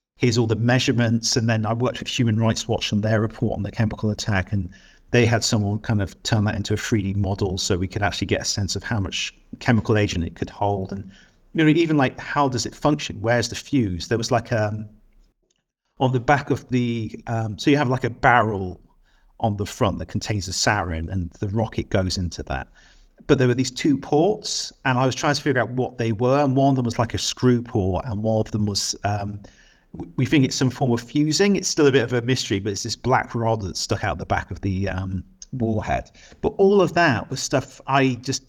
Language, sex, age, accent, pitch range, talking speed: English, male, 50-69, British, 105-130 Hz, 240 wpm